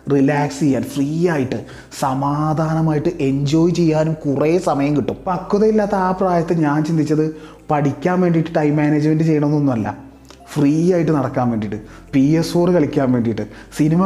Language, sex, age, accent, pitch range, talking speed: Malayalam, male, 30-49, native, 120-160 Hz, 130 wpm